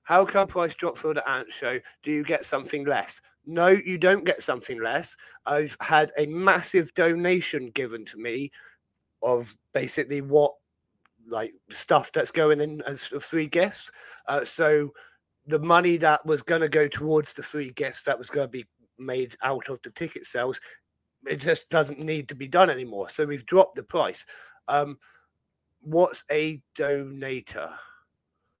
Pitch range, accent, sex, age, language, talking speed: 140-170 Hz, British, male, 30-49, English, 165 wpm